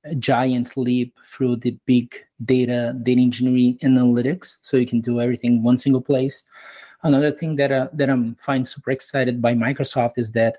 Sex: male